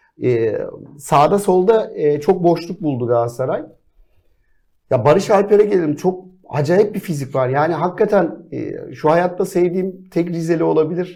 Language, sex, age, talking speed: Turkish, male, 50-69, 140 wpm